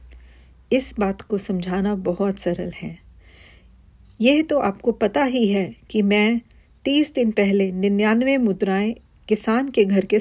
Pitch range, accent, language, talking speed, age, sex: 190-235 Hz, native, Hindi, 140 wpm, 40-59, female